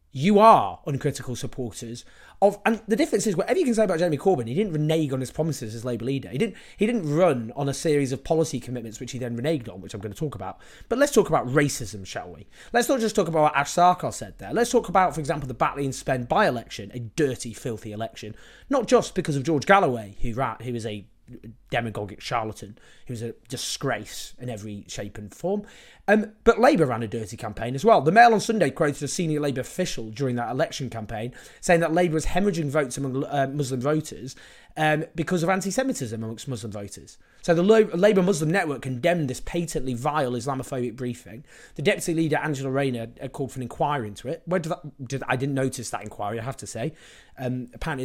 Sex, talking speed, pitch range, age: male, 220 wpm, 120-170 Hz, 30-49